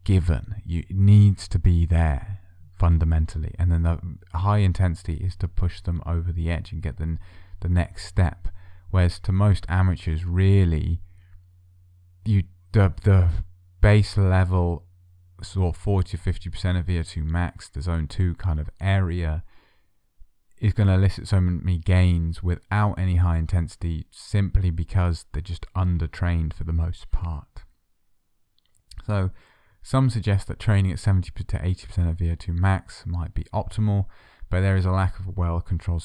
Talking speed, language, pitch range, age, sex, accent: 155 wpm, English, 85-95 Hz, 20-39, male, British